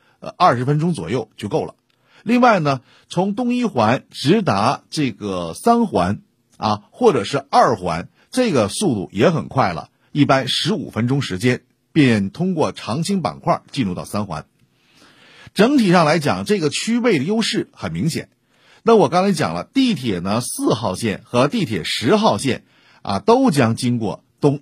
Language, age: Chinese, 50-69